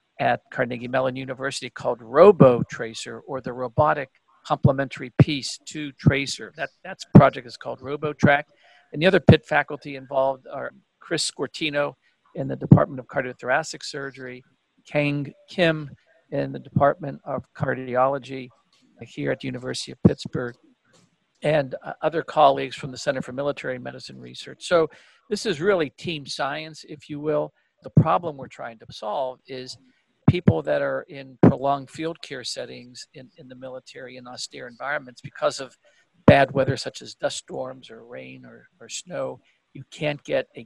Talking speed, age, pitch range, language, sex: 155 wpm, 50-69, 130-150 Hz, English, male